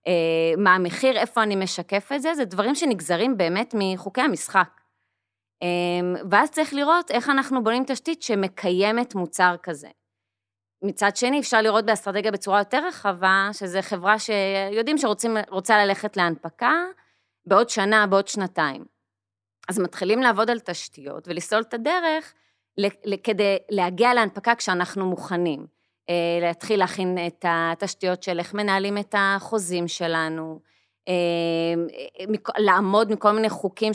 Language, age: Hebrew, 20-39